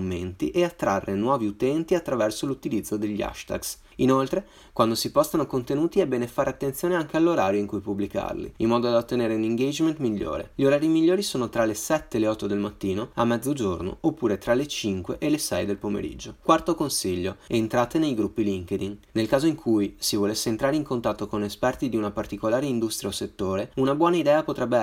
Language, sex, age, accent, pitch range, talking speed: Italian, male, 30-49, native, 110-160 Hz, 195 wpm